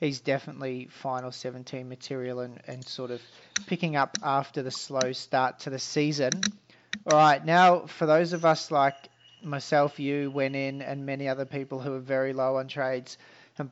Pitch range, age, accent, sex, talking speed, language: 130-155 Hz, 40-59, Australian, male, 180 wpm, English